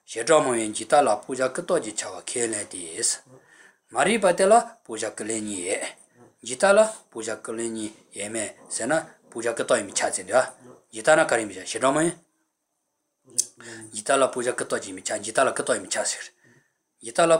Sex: male